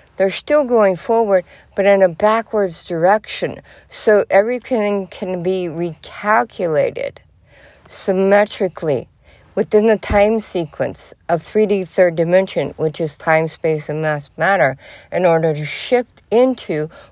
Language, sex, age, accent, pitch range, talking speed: English, female, 60-79, American, 145-195 Hz, 125 wpm